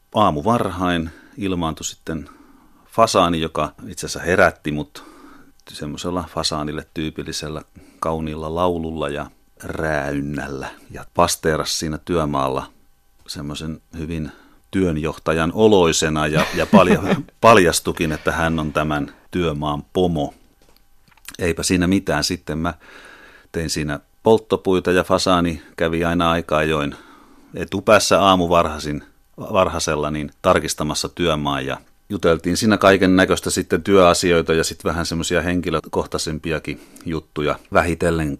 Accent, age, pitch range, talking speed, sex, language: native, 40-59, 75-90 Hz, 110 wpm, male, Finnish